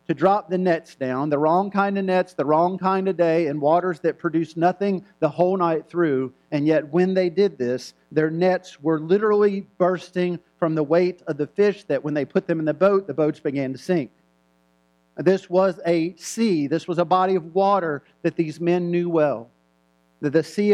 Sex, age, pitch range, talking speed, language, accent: male, 40-59, 155-190 Hz, 210 wpm, English, American